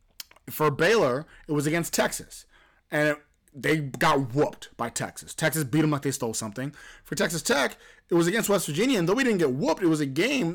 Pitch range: 115-155 Hz